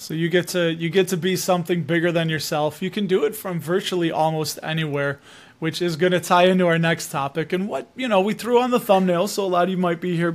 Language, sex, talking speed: English, male, 265 wpm